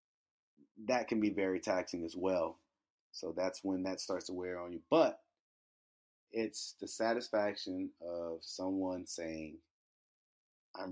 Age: 30-49